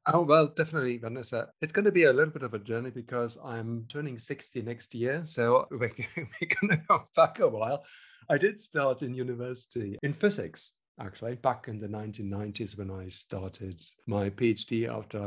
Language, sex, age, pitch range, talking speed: English, male, 50-69, 105-135 Hz, 180 wpm